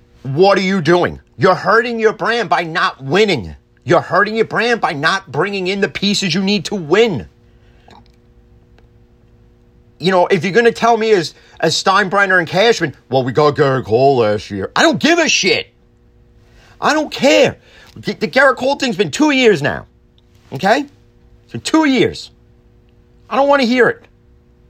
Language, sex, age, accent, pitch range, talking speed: English, male, 40-59, American, 145-235 Hz, 175 wpm